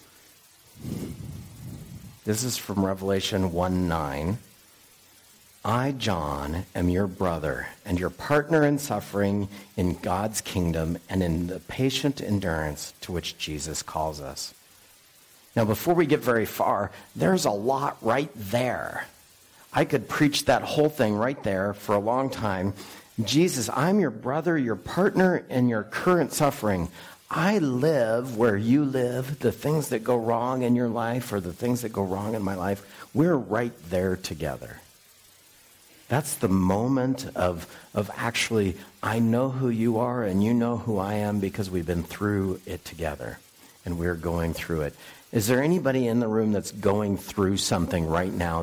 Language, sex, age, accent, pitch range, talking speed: English, male, 50-69, American, 90-120 Hz, 165 wpm